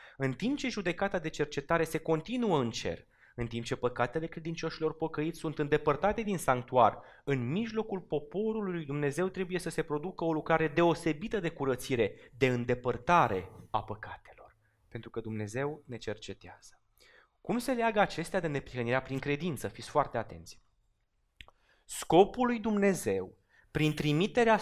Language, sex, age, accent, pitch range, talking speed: Romanian, male, 30-49, native, 130-195 Hz, 140 wpm